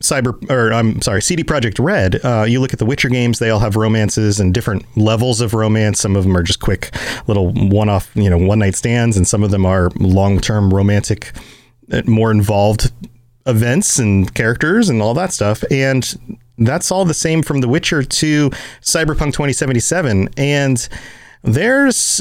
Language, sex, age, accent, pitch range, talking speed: English, male, 30-49, American, 110-150 Hz, 175 wpm